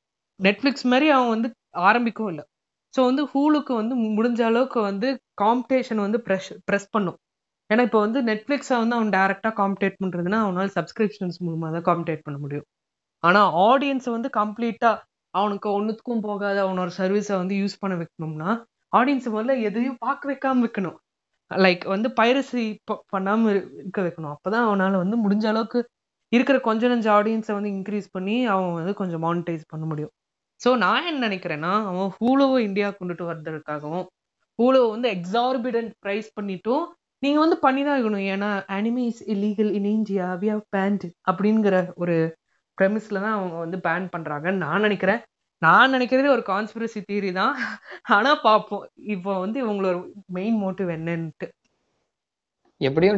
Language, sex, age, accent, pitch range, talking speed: Tamil, female, 20-39, native, 185-230 Hz, 120 wpm